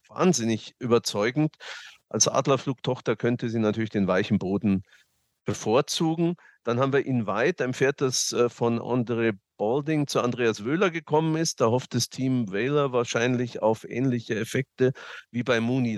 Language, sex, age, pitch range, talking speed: German, male, 50-69, 115-150 Hz, 145 wpm